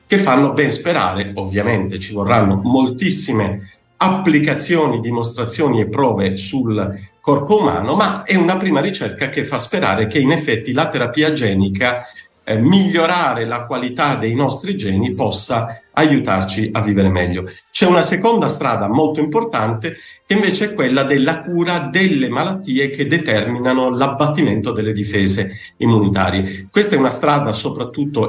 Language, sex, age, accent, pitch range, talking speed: Italian, male, 50-69, native, 105-150 Hz, 140 wpm